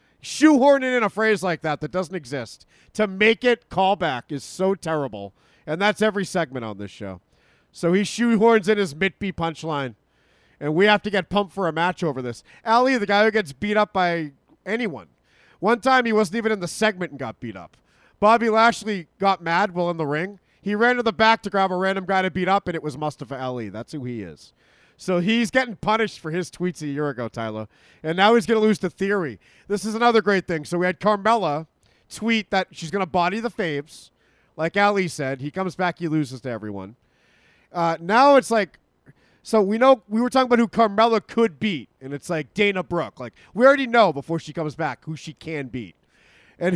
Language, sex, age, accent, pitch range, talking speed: English, male, 40-59, American, 150-220 Hz, 220 wpm